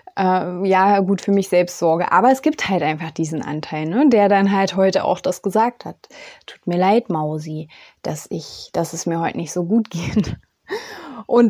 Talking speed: 185 wpm